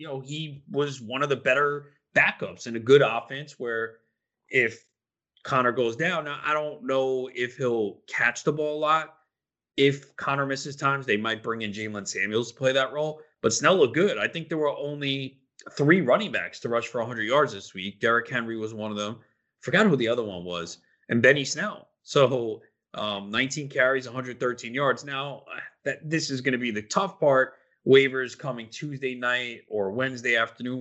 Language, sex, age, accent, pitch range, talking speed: English, male, 30-49, American, 110-140 Hz, 195 wpm